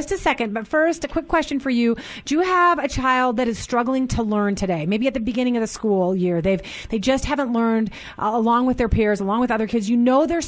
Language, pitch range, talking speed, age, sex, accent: English, 215-275 Hz, 260 wpm, 30-49, female, American